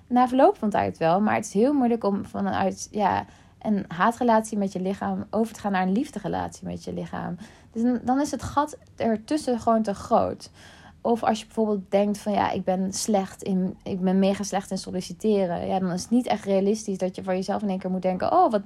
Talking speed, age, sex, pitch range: 230 wpm, 20-39, female, 185-235 Hz